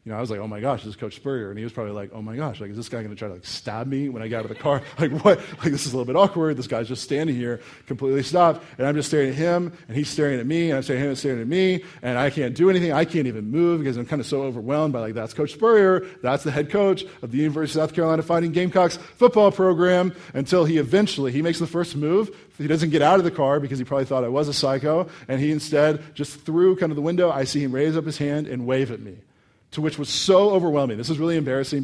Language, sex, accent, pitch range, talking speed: English, male, American, 130-170 Hz, 300 wpm